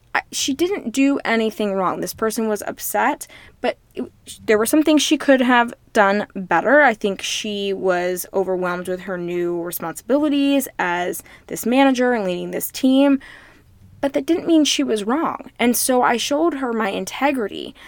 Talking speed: 165 wpm